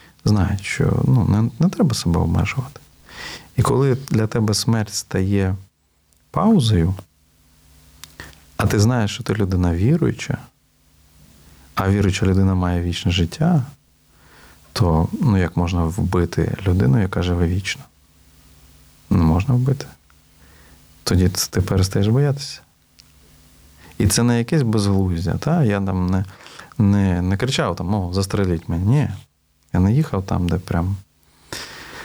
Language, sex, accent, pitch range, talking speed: Ukrainian, male, native, 80-115 Hz, 125 wpm